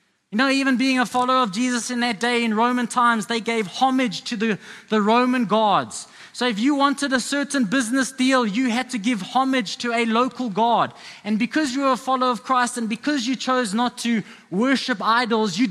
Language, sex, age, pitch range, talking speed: English, male, 20-39, 170-235 Hz, 215 wpm